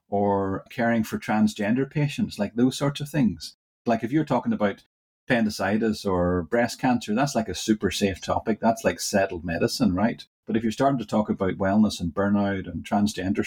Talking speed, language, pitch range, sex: 185 wpm, English, 100-120 Hz, male